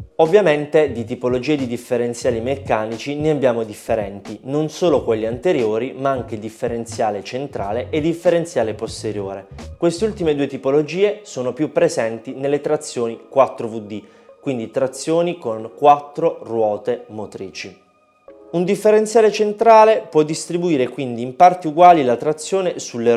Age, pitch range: 20-39, 115-160 Hz